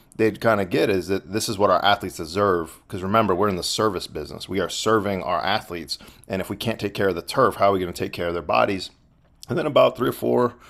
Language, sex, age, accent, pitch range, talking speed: English, male, 40-59, American, 95-130 Hz, 275 wpm